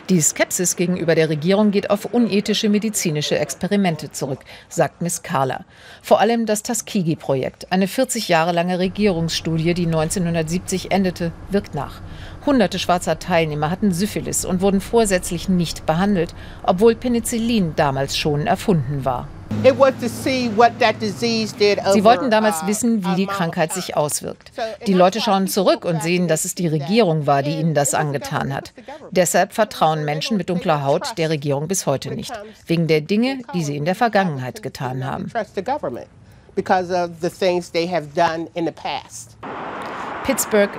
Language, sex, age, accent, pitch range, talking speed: German, female, 50-69, German, 160-210 Hz, 135 wpm